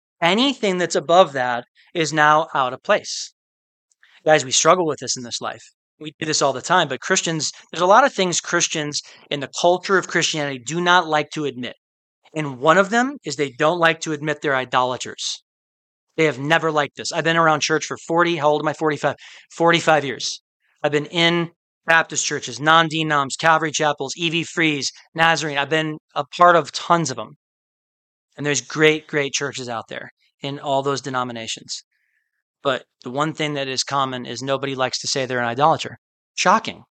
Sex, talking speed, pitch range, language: male, 190 wpm, 140-170 Hz, English